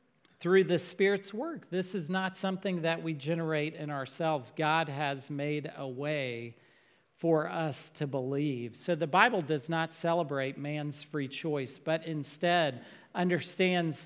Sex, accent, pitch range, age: male, American, 150-180 Hz, 40-59